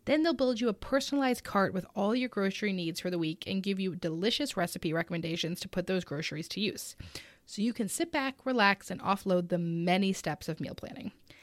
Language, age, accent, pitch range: English, 20-39, American, 185-270 Hz